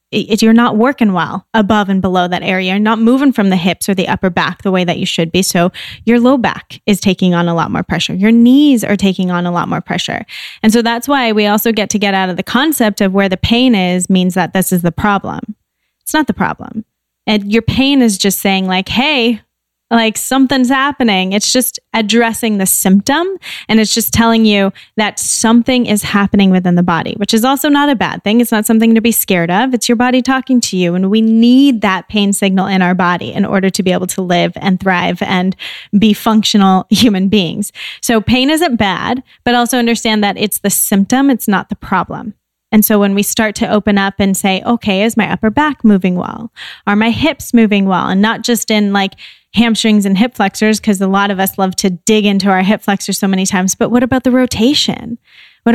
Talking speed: 230 wpm